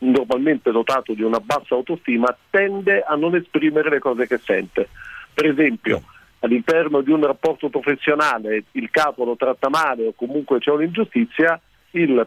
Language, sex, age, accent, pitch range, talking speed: Italian, male, 50-69, native, 125-170 Hz, 150 wpm